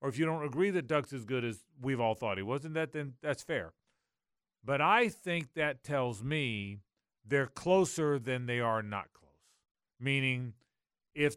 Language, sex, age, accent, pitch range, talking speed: English, male, 40-59, American, 125-175 Hz, 180 wpm